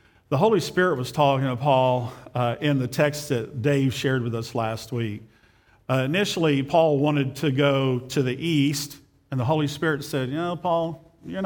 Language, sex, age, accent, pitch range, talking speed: English, male, 50-69, American, 125-155 Hz, 190 wpm